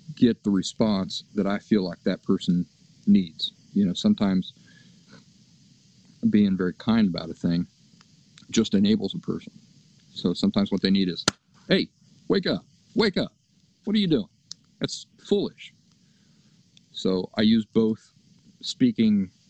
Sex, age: male, 50-69